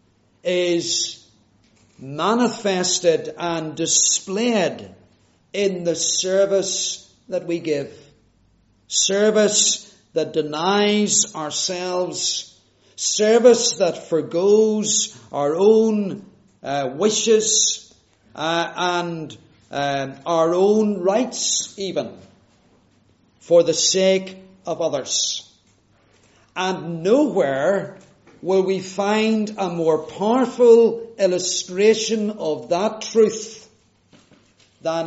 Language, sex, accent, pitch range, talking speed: English, male, British, 130-210 Hz, 80 wpm